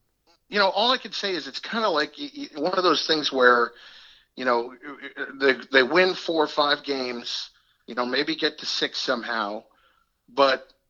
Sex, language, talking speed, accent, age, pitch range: male, English, 195 wpm, American, 50-69, 115-145 Hz